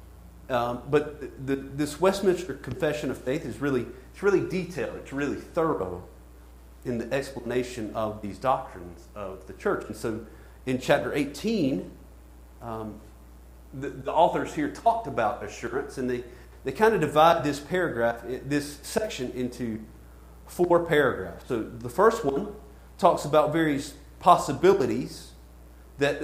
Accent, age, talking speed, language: American, 40-59, 140 wpm, English